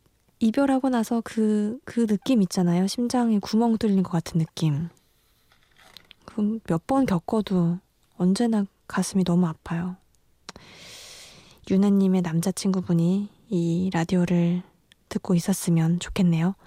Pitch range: 175-225 Hz